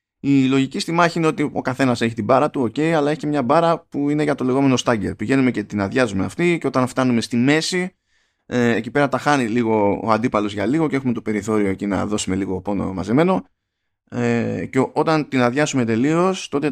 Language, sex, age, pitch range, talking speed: Greek, male, 20-39, 105-135 Hz, 210 wpm